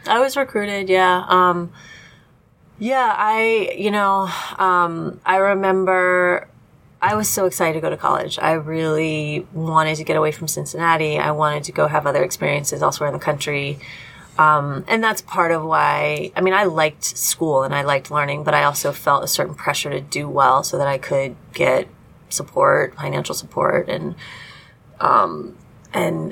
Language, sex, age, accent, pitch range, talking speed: English, female, 20-39, American, 155-180 Hz, 170 wpm